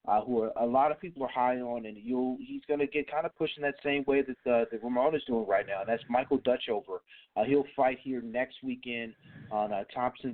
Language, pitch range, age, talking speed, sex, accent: English, 120-145 Hz, 30-49, 245 wpm, male, American